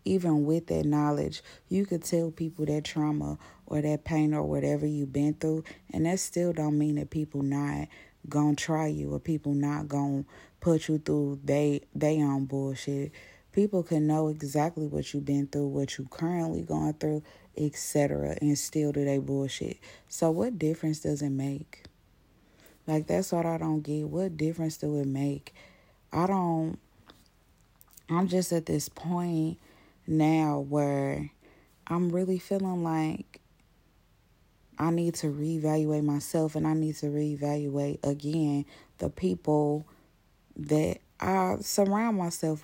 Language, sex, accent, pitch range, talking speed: English, female, American, 145-170 Hz, 155 wpm